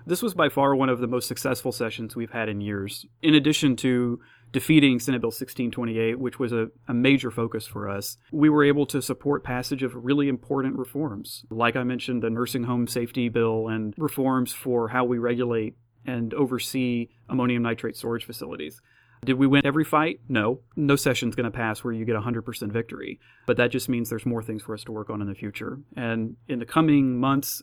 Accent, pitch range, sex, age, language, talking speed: American, 115-130 Hz, male, 30-49, English, 205 wpm